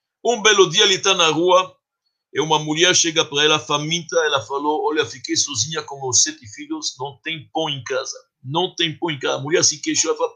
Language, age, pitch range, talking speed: Portuguese, 60-79, 145-225 Hz, 225 wpm